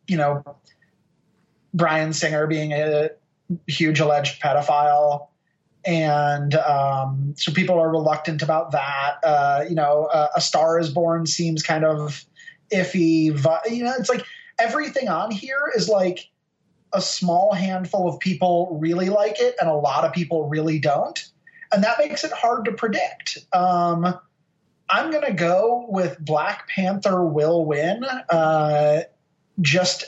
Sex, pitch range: male, 155-190 Hz